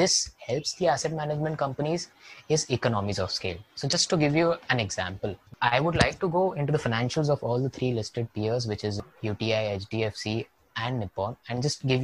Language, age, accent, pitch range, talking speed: English, 20-39, Indian, 110-150 Hz, 200 wpm